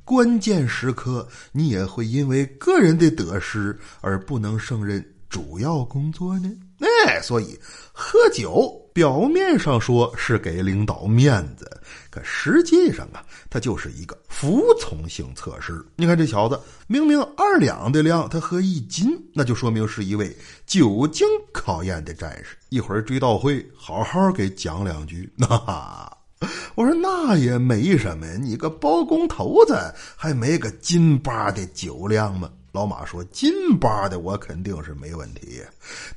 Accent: native